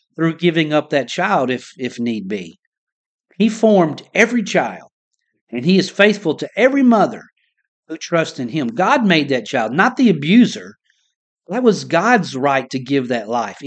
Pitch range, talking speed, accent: 150-215 Hz, 170 wpm, American